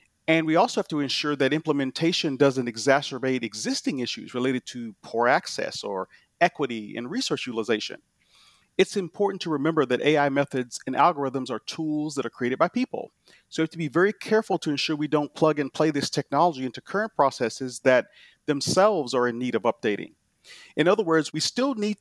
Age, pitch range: 40-59, 130-175 Hz